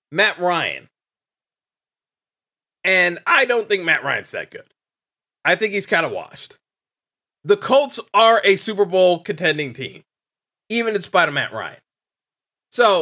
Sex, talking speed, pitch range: male, 145 wpm, 160-215 Hz